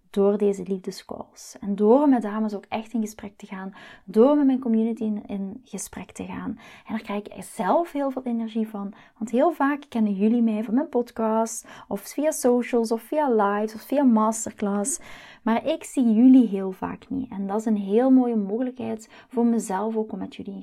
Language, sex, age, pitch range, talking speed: Dutch, female, 20-39, 210-250 Hz, 200 wpm